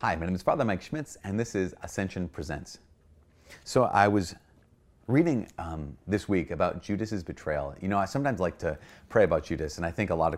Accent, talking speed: American, 215 wpm